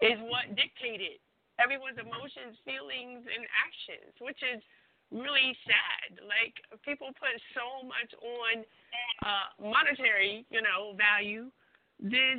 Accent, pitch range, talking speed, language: American, 225-275 Hz, 115 wpm, English